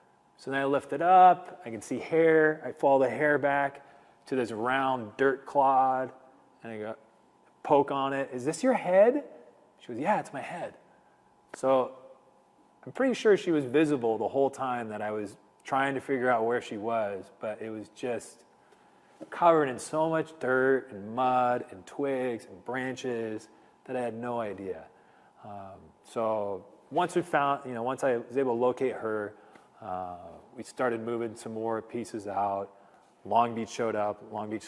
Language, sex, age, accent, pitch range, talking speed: English, male, 30-49, American, 110-135 Hz, 180 wpm